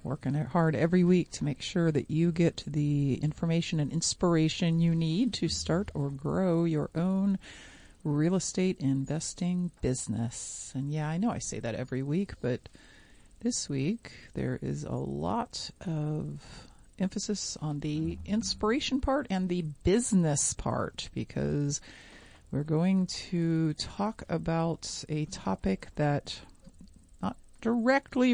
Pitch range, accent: 140-185 Hz, American